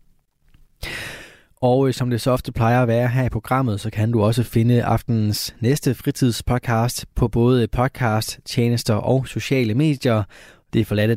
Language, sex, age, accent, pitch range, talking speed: Danish, male, 20-39, native, 110-130 Hz, 150 wpm